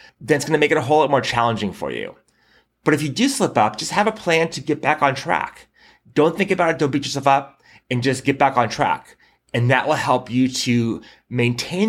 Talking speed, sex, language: 245 wpm, male, English